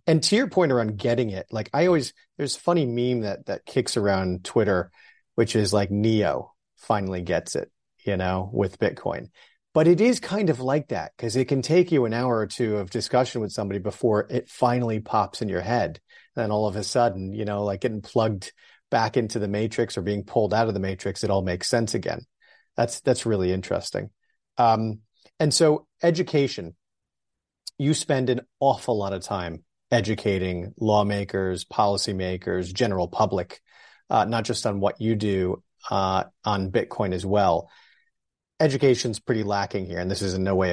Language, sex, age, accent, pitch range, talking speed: English, male, 40-59, American, 100-120 Hz, 185 wpm